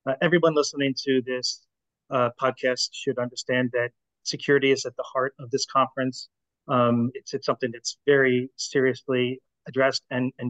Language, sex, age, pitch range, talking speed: English, male, 30-49, 125-145 Hz, 160 wpm